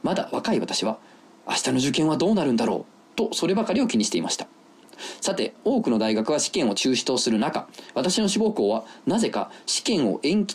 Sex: male